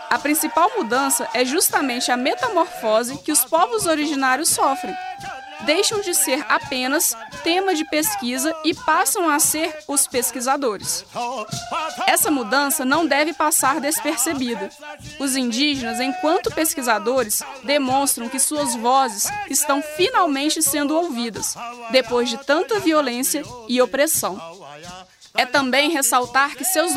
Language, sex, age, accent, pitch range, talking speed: Portuguese, female, 20-39, Brazilian, 255-335 Hz, 120 wpm